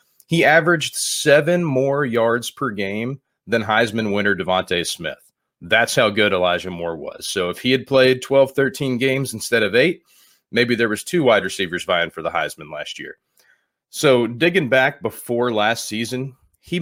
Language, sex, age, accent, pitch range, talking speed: English, male, 30-49, American, 105-135 Hz, 170 wpm